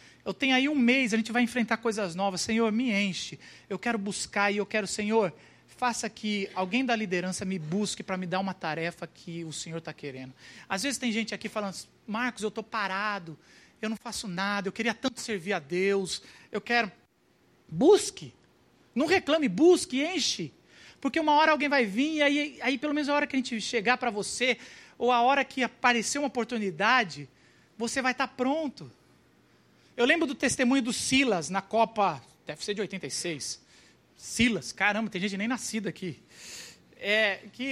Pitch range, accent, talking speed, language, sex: 205-265 Hz, Brazilian, 185 wpm, Portuguese, male